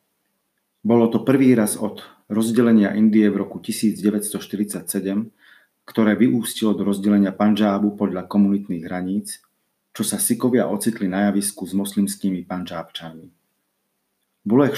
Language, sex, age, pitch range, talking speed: Slovak, male, 40-59, 100-110 Hz, 115 wpm